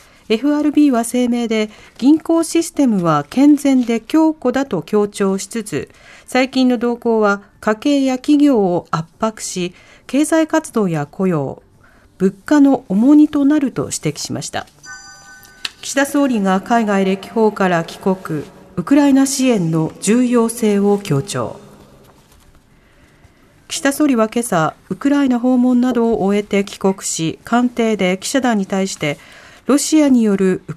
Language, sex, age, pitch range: Japanese, female, 40-59, 190-260 Hz